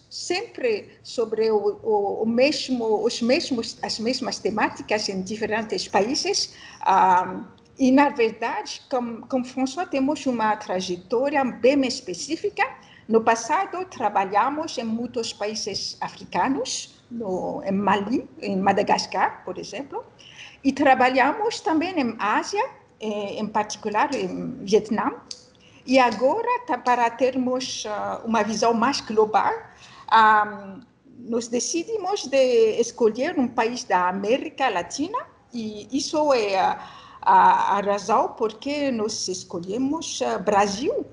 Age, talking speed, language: 60-79, 115 wpm, Portuguese